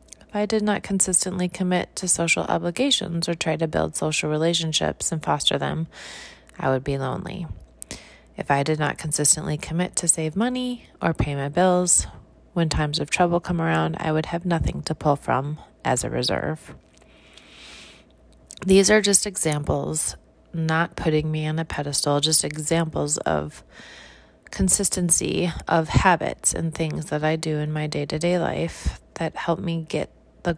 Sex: female